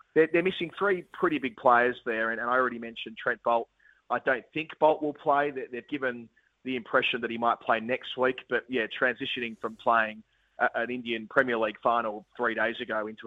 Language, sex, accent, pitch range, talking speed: English, male, Australian, 115-130 Hz, 195 wpm